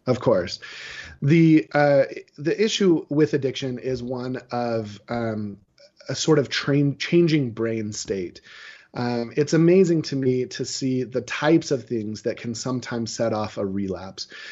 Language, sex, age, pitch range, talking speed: English, male, 30-49, 115-140 Hz, 155 wpm